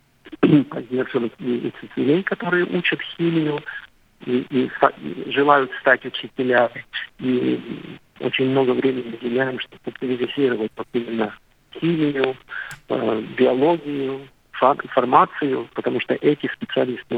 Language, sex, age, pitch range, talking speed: Russian, male, 50-69, 125-160 Hz, 95 wpm